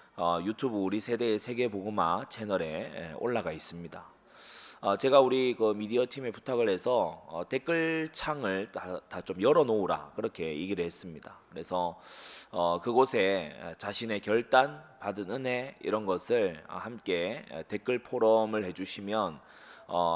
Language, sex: Korean, male